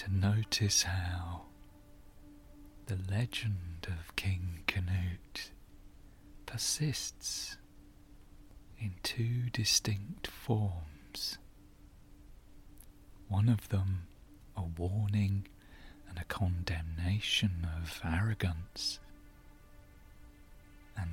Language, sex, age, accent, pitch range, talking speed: English, male, 40-59, British, 85-105 Hz, 70 wpm